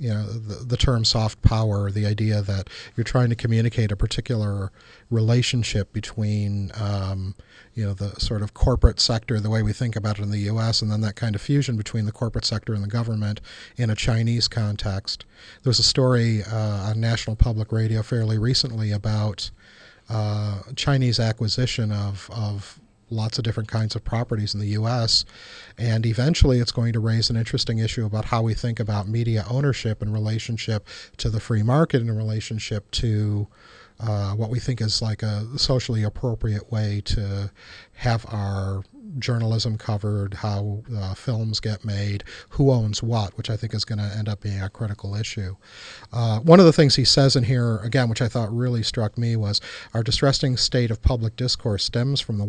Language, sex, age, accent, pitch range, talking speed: English, male, 40-59, American, 105-120 Hz, 190 wpm